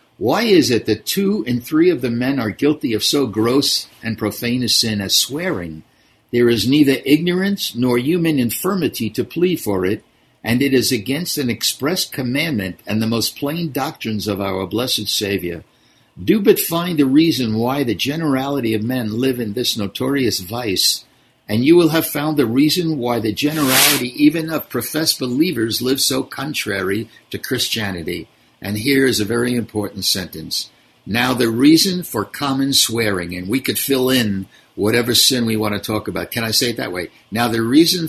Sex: male